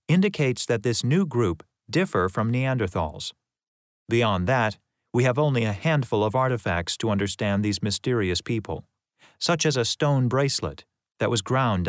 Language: English